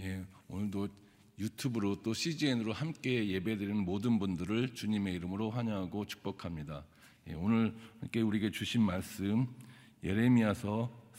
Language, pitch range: Korean, 100-135 Hz